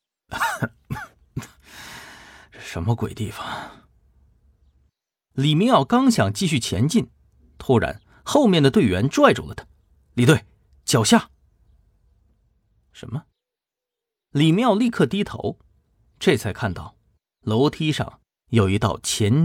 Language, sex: Chinese, male